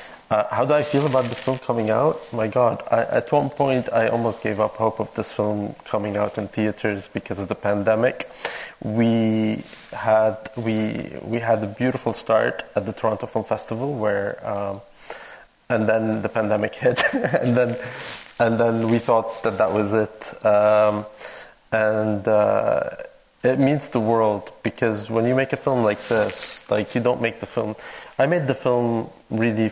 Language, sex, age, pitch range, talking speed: English, male, 30-49, 105-115 Hz, 180 wpm